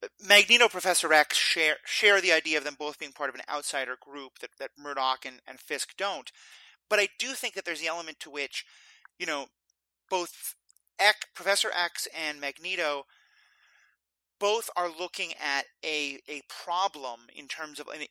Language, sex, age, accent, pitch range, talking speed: English, male, 30-49, American, 140-185 Hz, 170 wpm